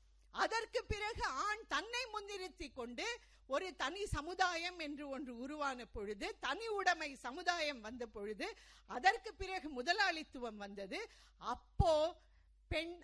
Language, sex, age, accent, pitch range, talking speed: Tamil, female, 50-69, native, 230-380 Hz, 110 wpm